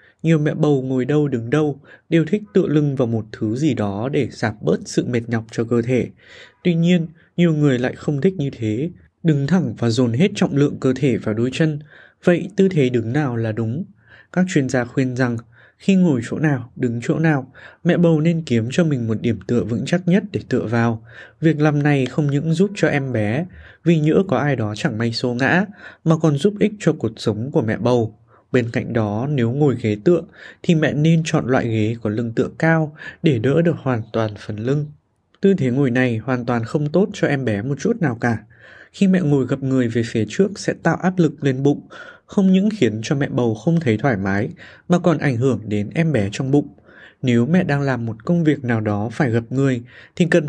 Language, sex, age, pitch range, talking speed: Vietnamese, male, 20-39, 120-165 Hz, 230 wpm